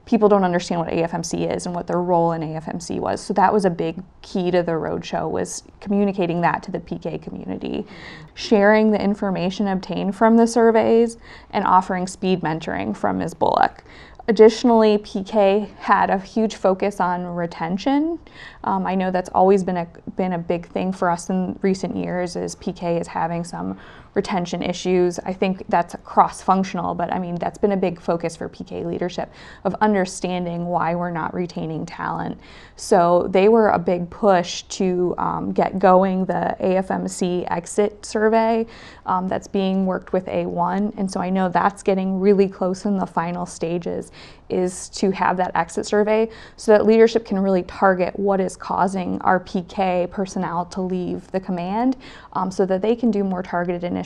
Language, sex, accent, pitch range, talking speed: English, female, American, 175-200 Hz, 175 wpm